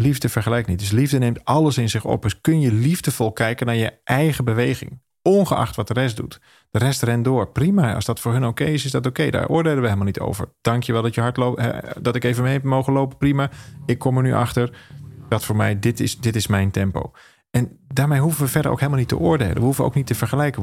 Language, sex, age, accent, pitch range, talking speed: Dutch, male, 40-59, Dutch, 110-135 Hz, 255 wpm